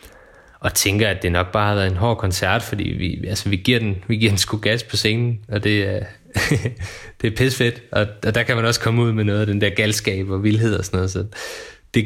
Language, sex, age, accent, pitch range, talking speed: Danish, male, 20-39, native, 95-115 Hz, 245 wpm